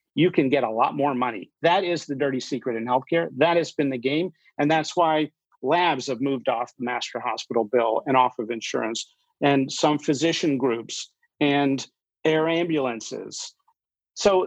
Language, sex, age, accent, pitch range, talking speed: English, male, 50-69, American, 130-165 Hz, 175 wpm